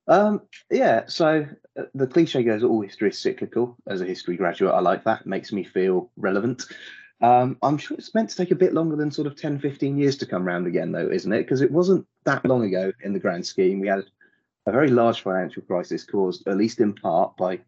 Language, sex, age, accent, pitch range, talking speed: English, male, 30-49, British, 95-120 Hz, 230 wpm